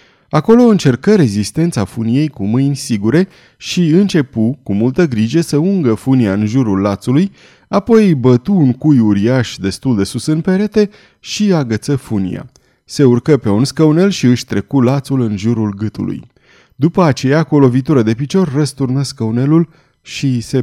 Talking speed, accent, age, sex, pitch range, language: 155 wpm, native, 30-49, male, 110-155 Hz, Romanian